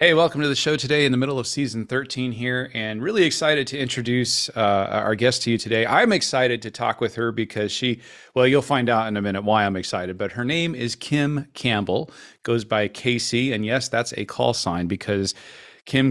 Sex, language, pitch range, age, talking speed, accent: male, English, 100-135 Hz, 40-59, 220 wpm, American